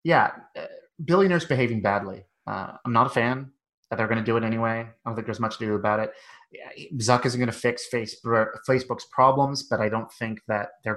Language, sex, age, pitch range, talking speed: English, male, 30-49, 105-125 Hz, 200 wpm